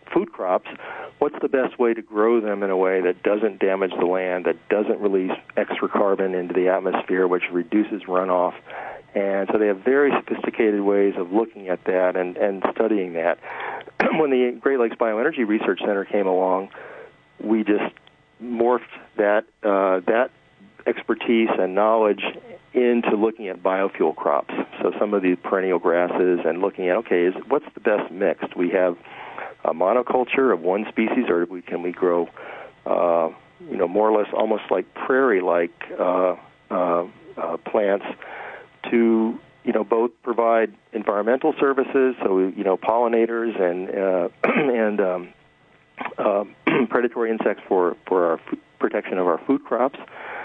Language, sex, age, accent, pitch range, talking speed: English, male, 40-59, American, 90-115 Hz, 160 wpm